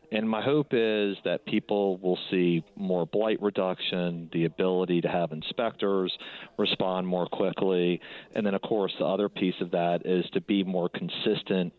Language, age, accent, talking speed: English, 40-59, American, 170 wpm